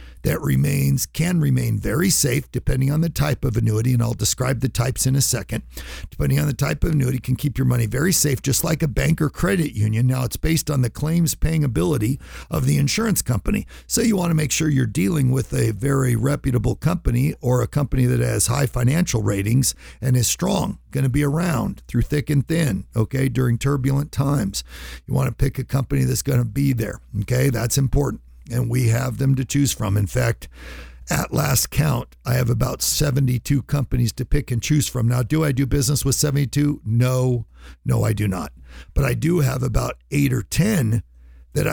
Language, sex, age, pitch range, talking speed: English, male, 50-69, 115-140 Hz, 205 wpm